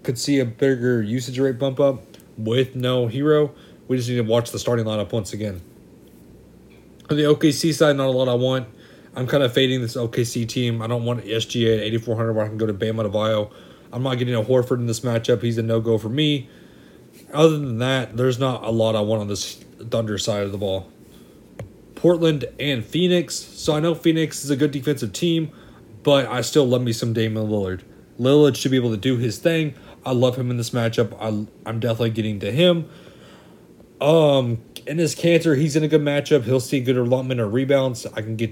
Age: 30-49